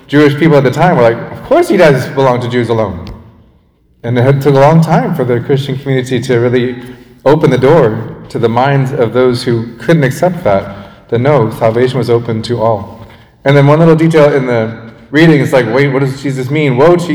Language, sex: English, male